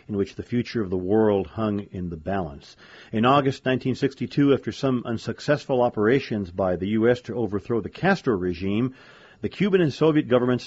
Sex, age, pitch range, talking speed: male, 40-59, 100-130 Hz, 175 wpm